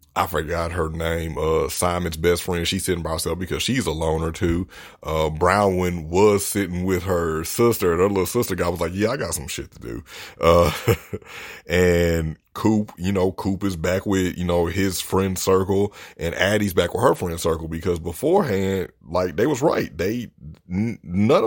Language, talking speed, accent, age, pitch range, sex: English, 185 wpm, American, 30-49, 85-105 Hz, male